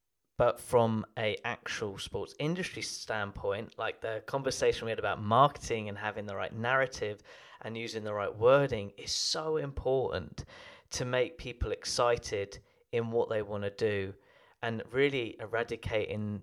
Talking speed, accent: 145 wpm, British